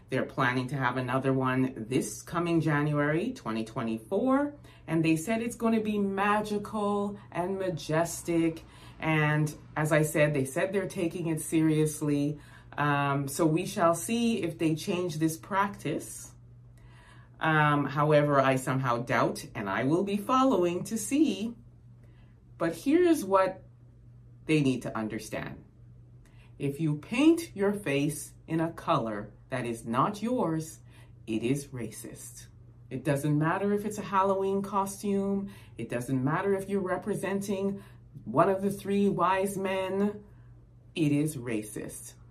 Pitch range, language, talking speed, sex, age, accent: 120-190 Hz, English, 140 wpm, female, 30-49, American